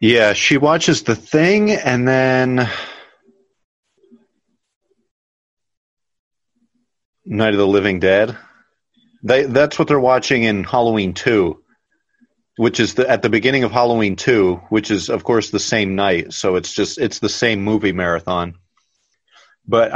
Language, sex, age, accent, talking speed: English, male, 40-59, American, 135 wpm